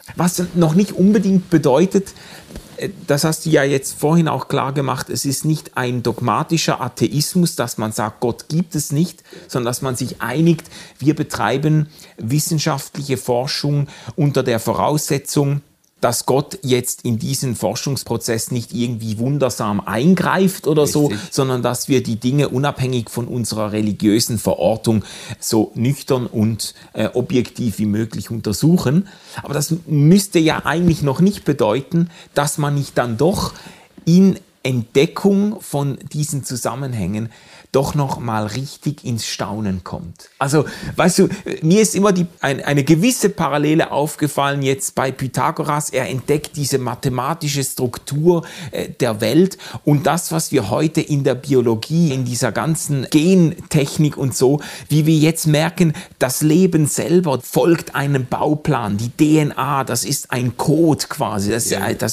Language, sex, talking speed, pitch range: German, male, 140 wpm, 125-165 Hz